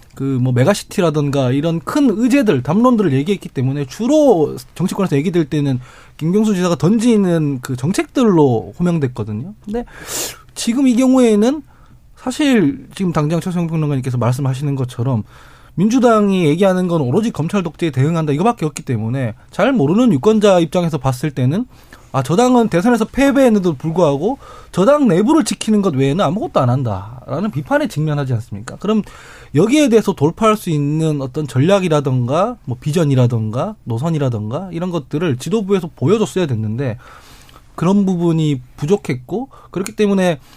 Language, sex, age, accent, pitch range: Korean, male, 20-39, native, 135-200 Hz